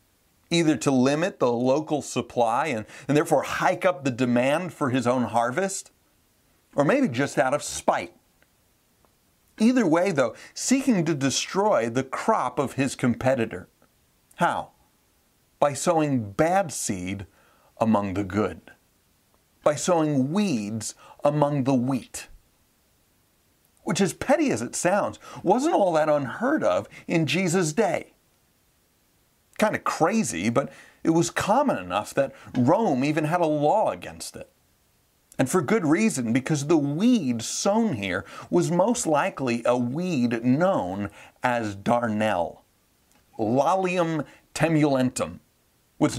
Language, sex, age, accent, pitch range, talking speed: English, male, 40-59, American, 120-175 Hz, 125 wpm